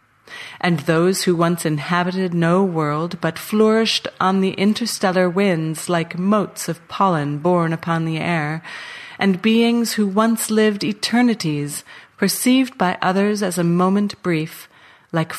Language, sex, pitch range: English, female, 160-195 Hz